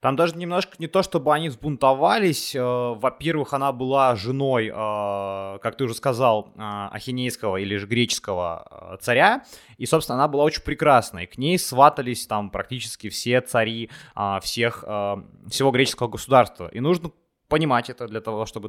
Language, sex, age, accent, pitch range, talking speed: Ukrainian, male, 20-39, native, 115-150 Hz, 145 wpm